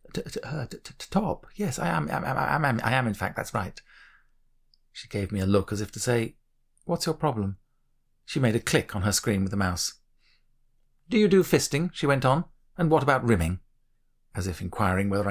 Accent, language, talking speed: British, English, 225 wpm